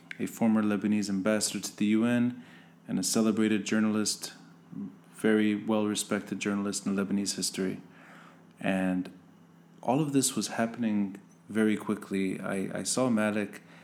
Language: English